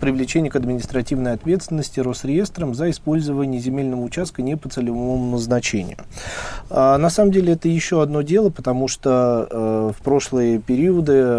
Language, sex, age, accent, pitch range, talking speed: Russian, male, 30-49, native, 110-145 Hz, 140 wpm